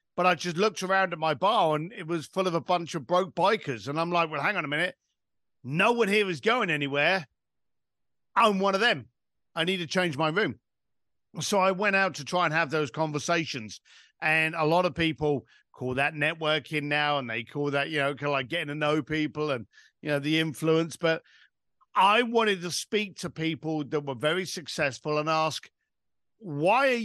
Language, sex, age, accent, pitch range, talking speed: English, male, 50-69, British, 150-190 Hz, 210 wpm